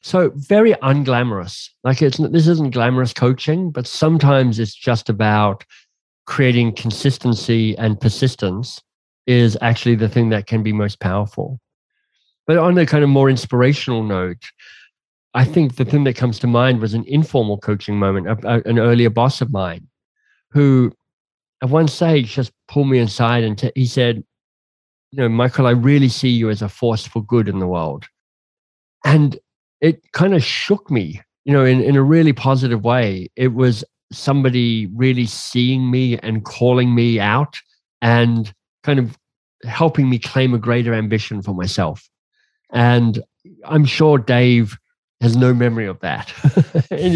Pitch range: 110-135 Hz